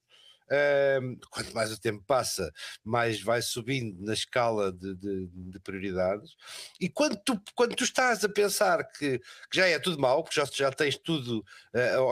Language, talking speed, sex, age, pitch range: Portuguese, 175 wpm, male, 50-69, 120-180 Hz